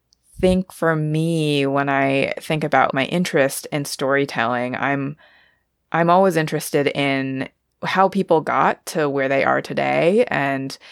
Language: Chinese